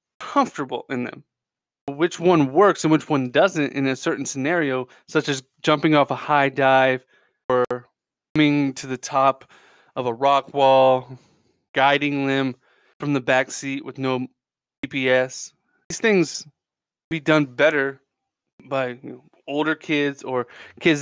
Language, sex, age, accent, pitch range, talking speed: English, male, 20-39, American, 130-165 Hz, 145 wpm